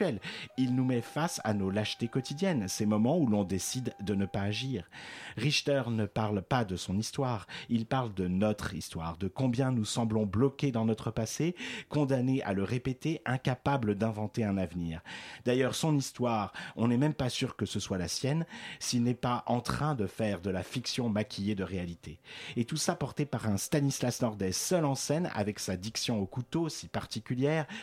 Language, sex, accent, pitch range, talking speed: French, male, French, 100-130 Hz, 190 wpm